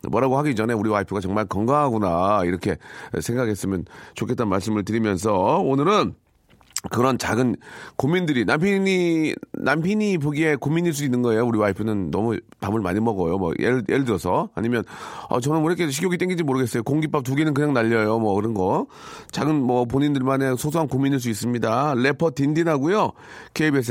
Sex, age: male, 40-59